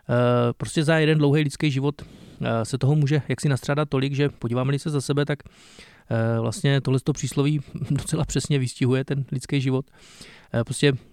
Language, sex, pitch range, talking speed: Czech, male, 125-145 Hz, 155 wpm